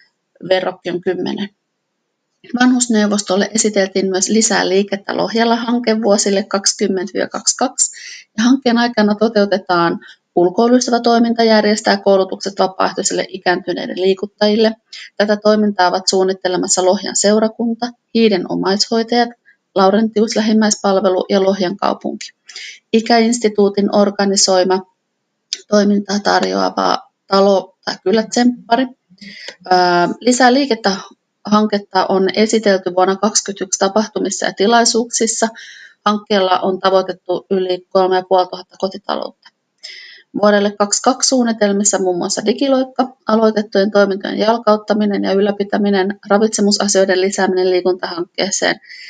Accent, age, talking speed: native, 30-49, 85 wpm